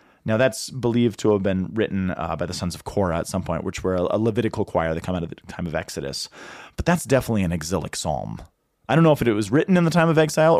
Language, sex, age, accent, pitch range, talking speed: English, male, 30-49, American, 105-145 Hz, 265 wpm